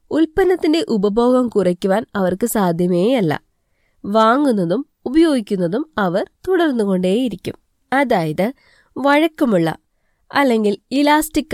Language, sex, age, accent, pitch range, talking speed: Malayalam, female, 20-39, native, 190-285 Hz, 75 wpm